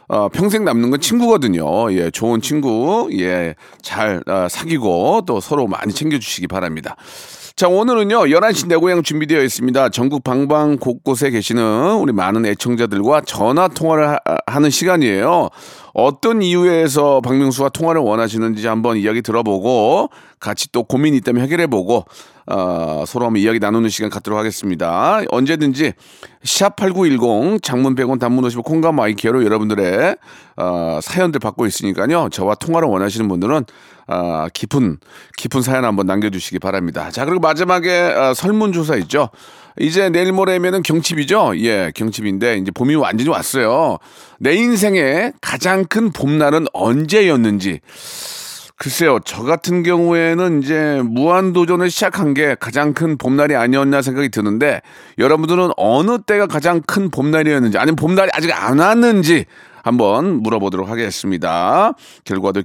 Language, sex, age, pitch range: Korean, male, 40-59, 115-175 Hz